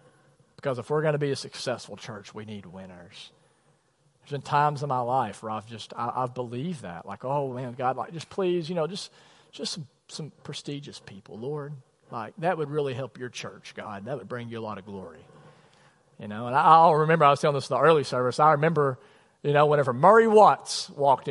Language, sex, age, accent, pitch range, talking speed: English, male, 40-59, American, 130-160 Hz, 220 wpm